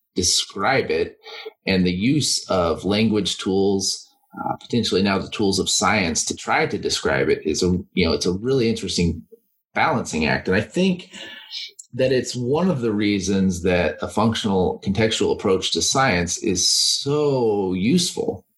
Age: 30-49